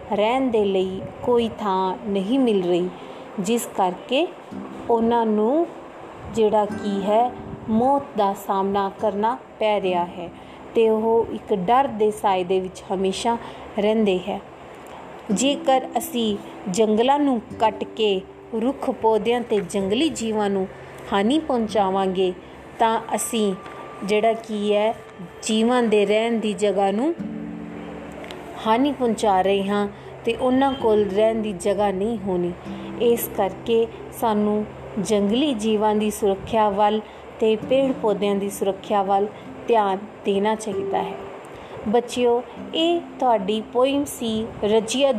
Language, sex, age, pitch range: Punjabi, female, 30-49, 205-235 Hz